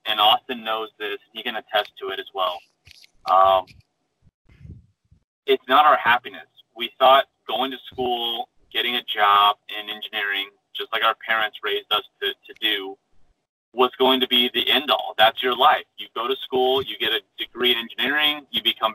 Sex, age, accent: male, 30-49, American